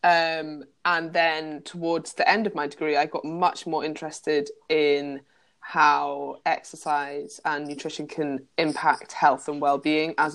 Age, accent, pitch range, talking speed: 20-39, British, 140-160 Hz, 145 wpm